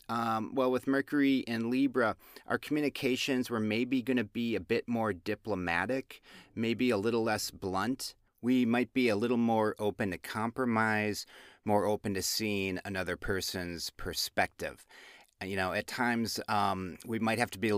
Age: 30-49